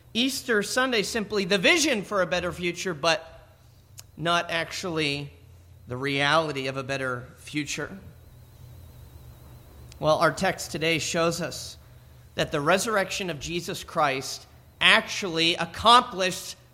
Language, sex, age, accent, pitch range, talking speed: English, male, 40-59, American, 160-230 Hz, 115 wpm